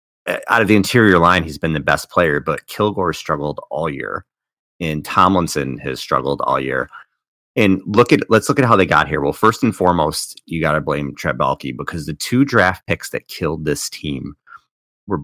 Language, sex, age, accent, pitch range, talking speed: English, male, 30-49, American, 75-95 Hz, 200 wpm